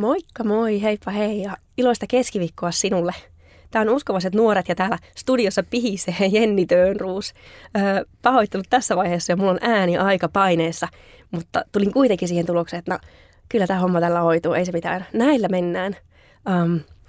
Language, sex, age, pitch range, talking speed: Finnish, female, 20-39, 175-225 Hz, 160 wpm